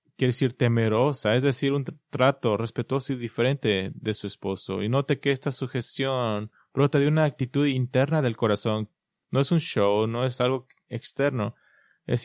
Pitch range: 115-140 Hz